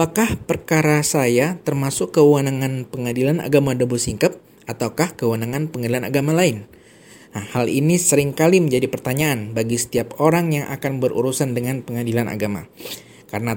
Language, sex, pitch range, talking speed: Indonesian, male, 120-150 Hz, 135 wpm